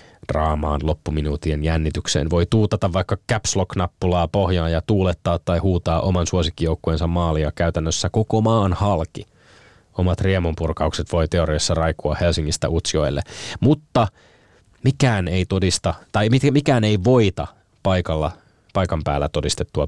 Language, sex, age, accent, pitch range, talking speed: Finnish, male, 20-39, native, 80-105 Hz, 120 wpm